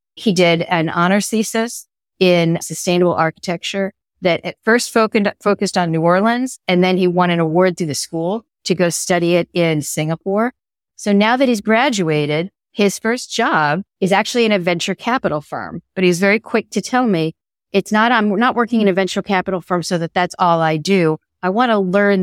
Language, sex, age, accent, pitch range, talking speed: English, female, 50-69, American, 175-215 Hz, 195 wpm